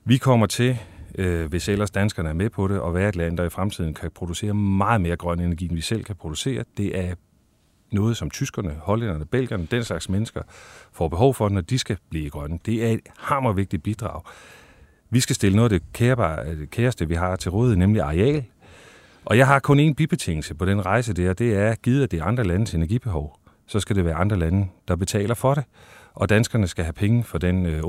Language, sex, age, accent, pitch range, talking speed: Danish, male, 40-59, native, 85-115 Hz, 220 wpm